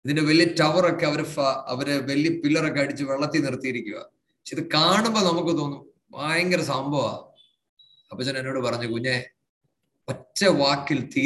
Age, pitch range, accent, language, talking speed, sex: 30-49, 135-175 Hz, Indian, English, 135 wpm, male